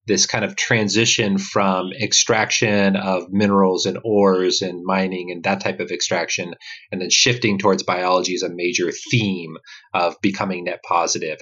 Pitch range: 90-110 Hz